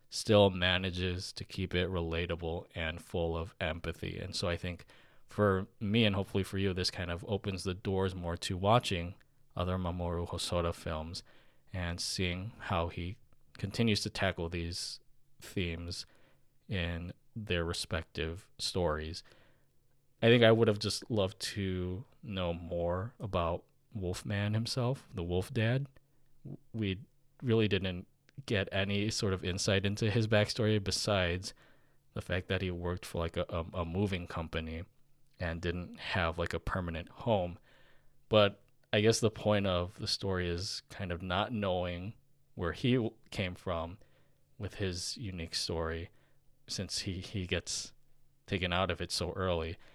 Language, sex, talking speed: English, male, 150 wpm